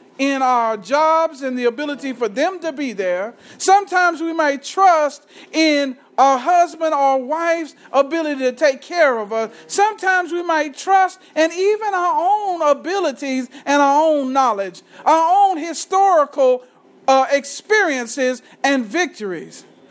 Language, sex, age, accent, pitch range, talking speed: English, male, 50-69, American, 280-365 Hz, 140 wpm